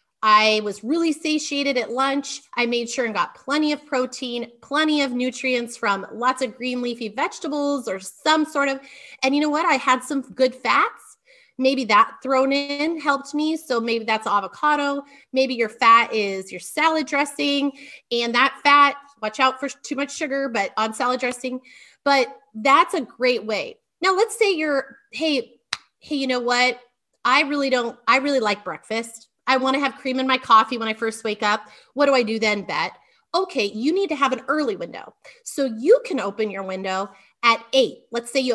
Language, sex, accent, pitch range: English, female, American, 230-285 Hz